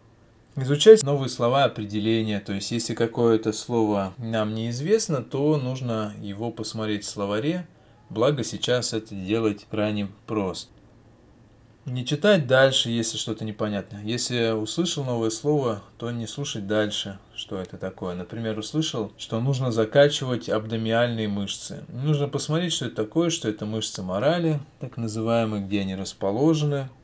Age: 20-39